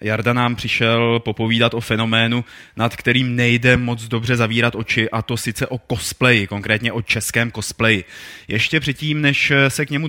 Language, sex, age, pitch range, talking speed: Czech, male, 20-39, 105-120 Hz, 165 wpm